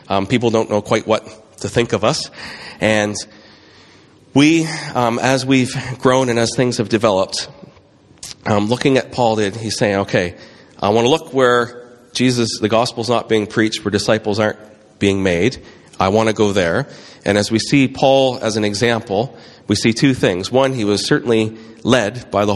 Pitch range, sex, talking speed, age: 105-120 Hz, male, 180 wpm, 40-59